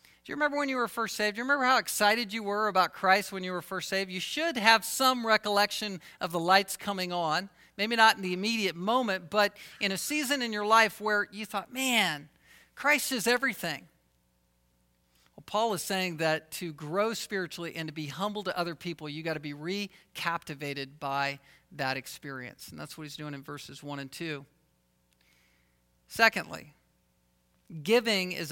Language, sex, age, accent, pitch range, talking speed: English, male, 50-69, American, 160-230 Hz, 185 wpm